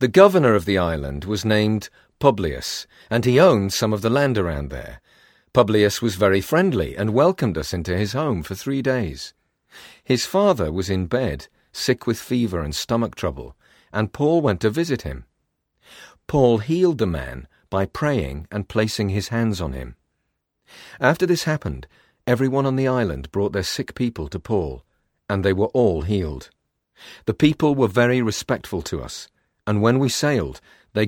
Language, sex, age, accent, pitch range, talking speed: English, male, 40-59, British, 90-125 Hz, 170 wpm